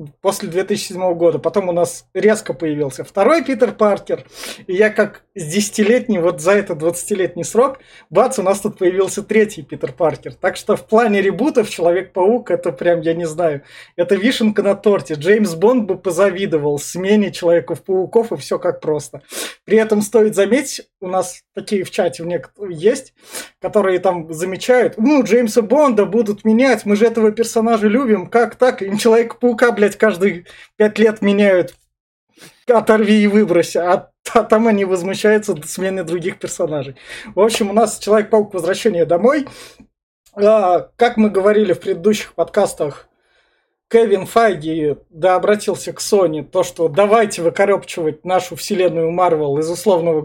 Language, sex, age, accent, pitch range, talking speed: Russian, male, 20-39, native, 175-215 Hz, 155 wpm